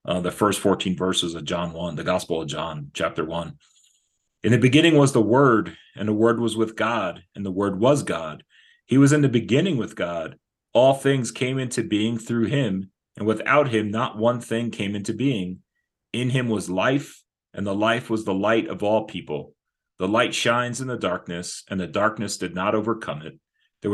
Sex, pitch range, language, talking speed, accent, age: male, 100-125 Hz, English, 205 wpm, American, 40-59